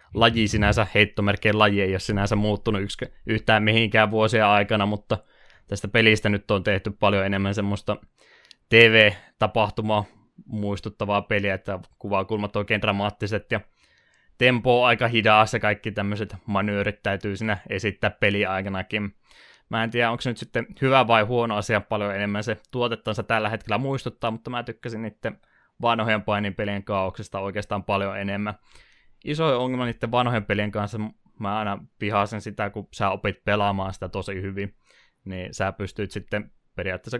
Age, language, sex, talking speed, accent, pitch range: 20-39, Finnish, male, 150 wpm, native, 100-115 Hz